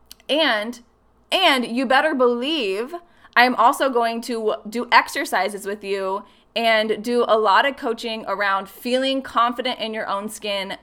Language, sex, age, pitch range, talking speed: English, female, 20-39, 200-240 Hz, 145 wpm